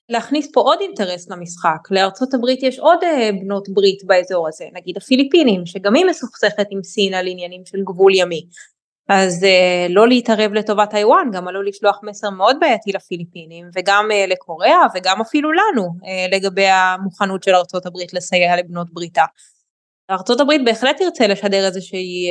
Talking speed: 150 wpm